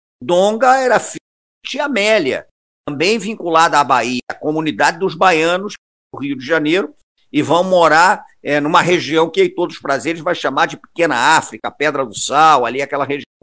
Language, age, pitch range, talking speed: Portuguese, 50-69, 155-220 Hz, 175 wpm